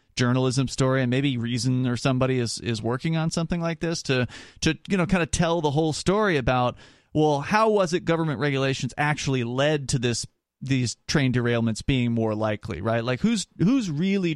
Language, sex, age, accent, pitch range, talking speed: English, male, 30-49, American, 120-165 Hz, 190 wpm